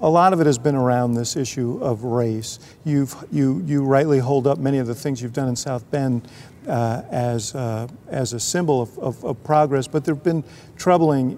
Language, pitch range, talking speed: English, 125-145 Hz, 215 wpm